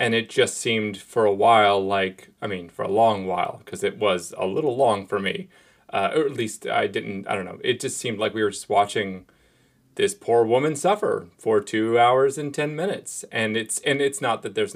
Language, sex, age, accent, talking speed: English, male, 30-49, American, 230 wpm